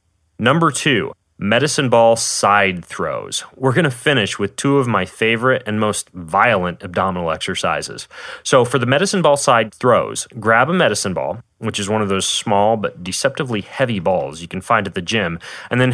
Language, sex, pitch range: English, male, 100-140 Hz